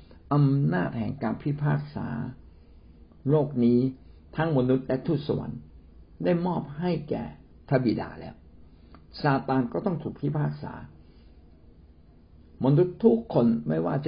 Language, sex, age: Thai, male, 60-79